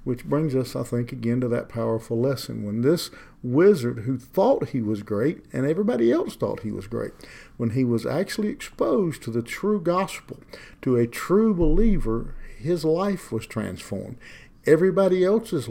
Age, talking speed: 50-69, 170 wpm